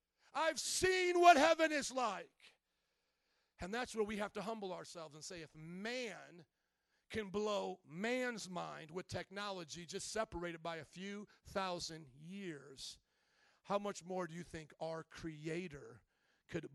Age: 40-59